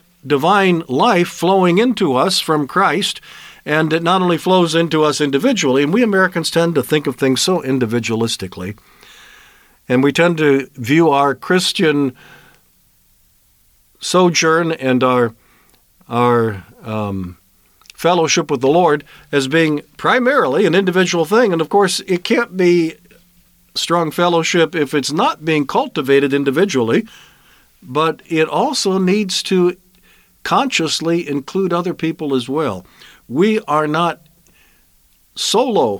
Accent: American